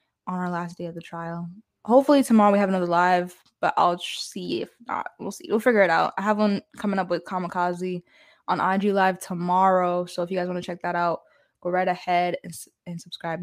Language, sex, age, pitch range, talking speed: English, female, 10-29, 180-205 Hz, 230 wpm